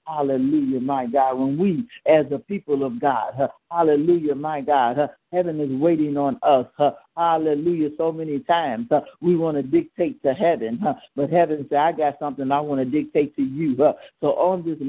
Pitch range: 135-165 Hz